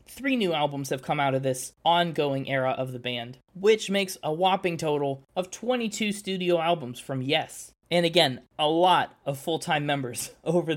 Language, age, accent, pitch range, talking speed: English, 20-39, American, 140-180 Hz, 180 wpm